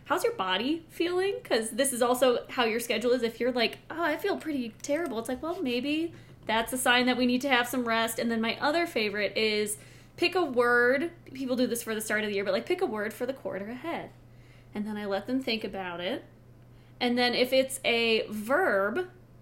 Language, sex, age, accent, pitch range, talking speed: English, female, 20-39, American, 215-285 Hz, 230 wpm